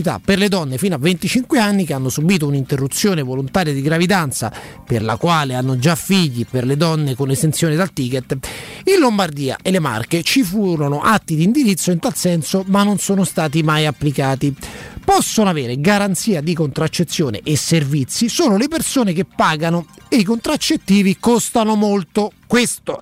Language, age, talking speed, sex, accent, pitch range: Italian, 30-49, 165 wpm, male, native, 150-200 Hz